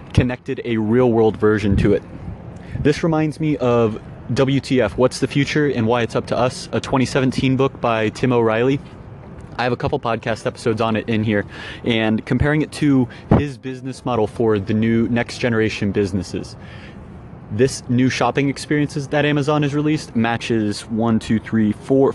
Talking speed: 170 wpm